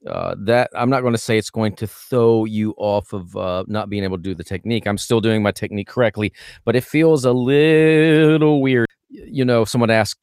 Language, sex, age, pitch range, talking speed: English, male, 30-49, 110-140 Hz, 225 wpm